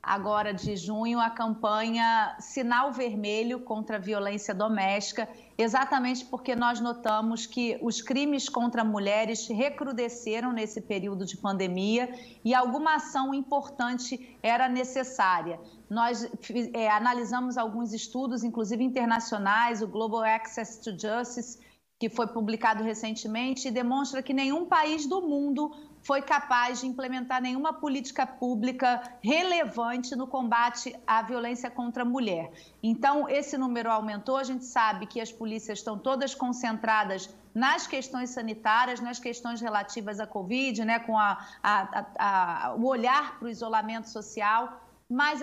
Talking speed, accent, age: 130 wpm, Brazilian, 40-59